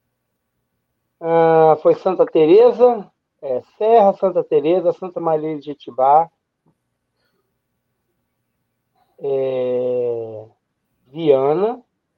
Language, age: Portuguese, 40-59